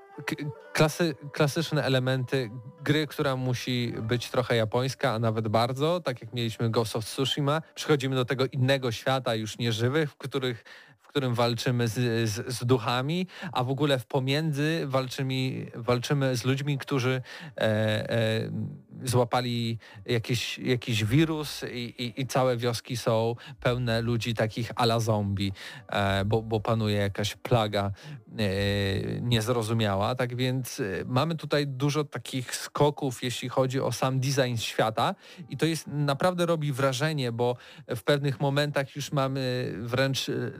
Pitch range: 115-135 Hz